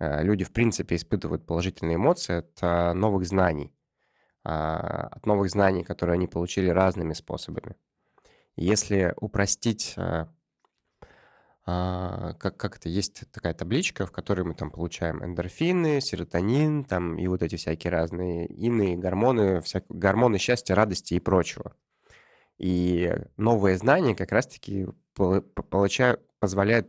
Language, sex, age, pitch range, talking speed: Russian, male, 20-39, 85-105 Hz, 115 wpm